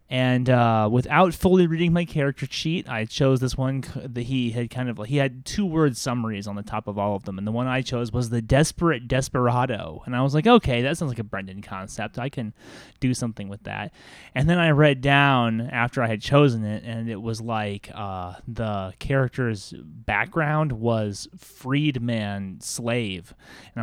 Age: 20-39